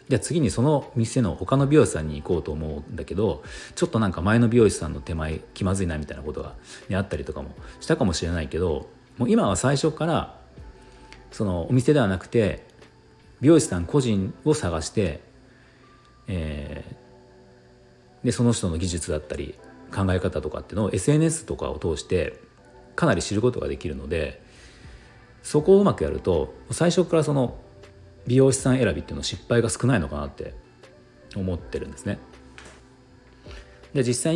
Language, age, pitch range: Japanese, 40-59, 85-125 Hz